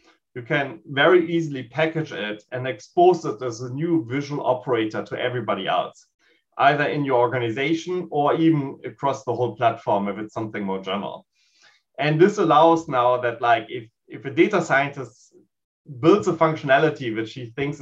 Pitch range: 120-160 Hz